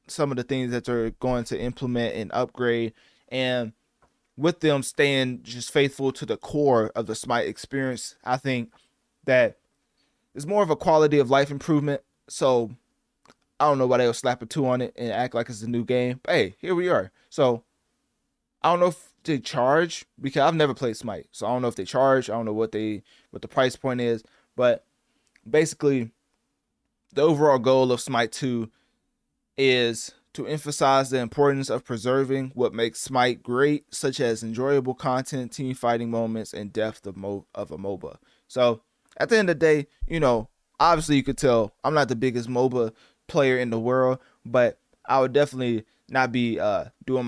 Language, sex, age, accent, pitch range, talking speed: English, male, 20-39, American, 115-140 Hz, 190 wpm